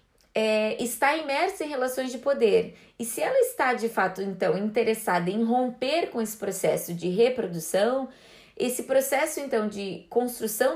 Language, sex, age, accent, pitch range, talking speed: Portuguese, female, 20-39, Brazilian, 200-300 Hz, 145 wpm